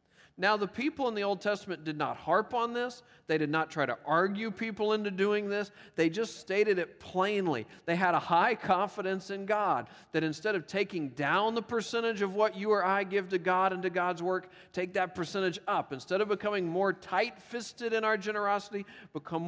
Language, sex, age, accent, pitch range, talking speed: English, male, 40-59, American, 155-205 Hz, 205 wpm